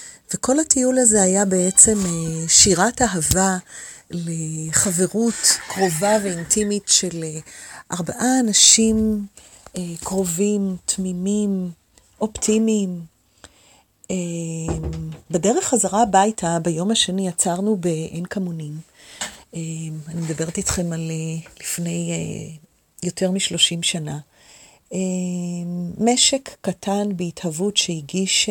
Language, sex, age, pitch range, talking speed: Hebrew, female, 40-59, 165-195 Hz, 90 wpm